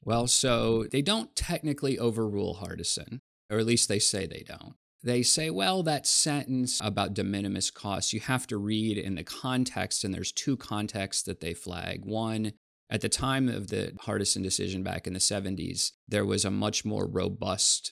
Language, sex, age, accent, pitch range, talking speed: English, male, 20-39, American, 95-110 Hz, 185 wpm